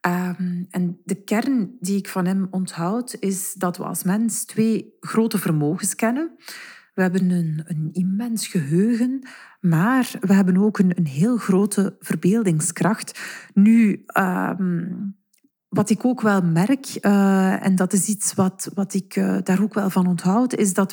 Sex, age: female, 40-59